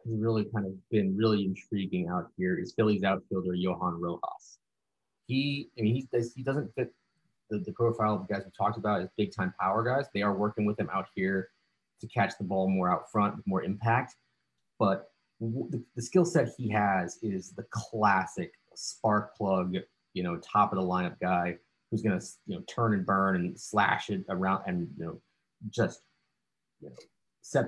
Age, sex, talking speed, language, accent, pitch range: 30-49, male, 195 wpm, English, American, 95-110 Hz